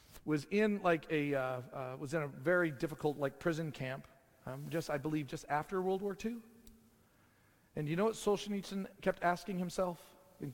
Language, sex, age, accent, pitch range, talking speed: English, male, 40-59, American, 135-185 Hz, 180 wpm